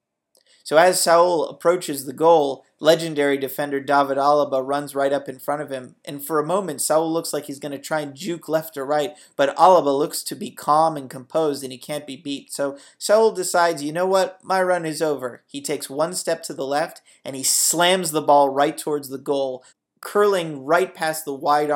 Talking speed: 210 wpm